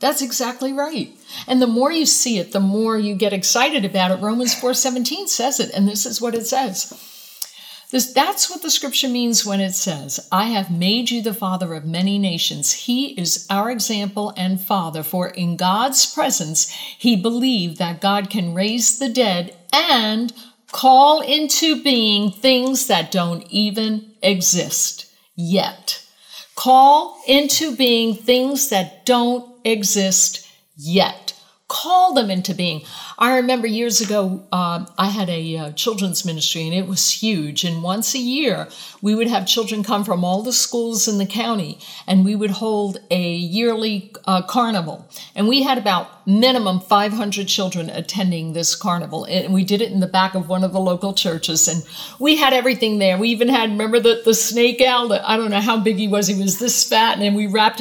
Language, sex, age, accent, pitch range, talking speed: English, female, 60-79, American, 190-245 Hz, 180 wpm